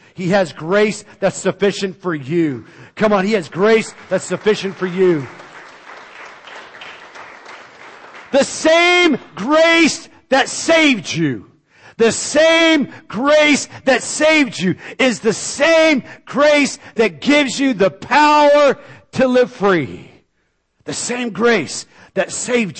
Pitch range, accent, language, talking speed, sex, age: 165-240 Hz, American, English, 120 wpm, male, 50-69